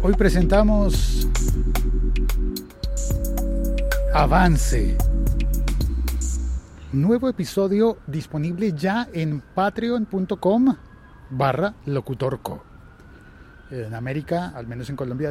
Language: Spanish